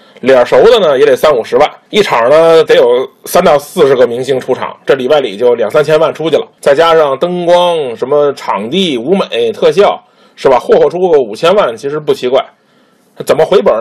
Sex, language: male, Chinese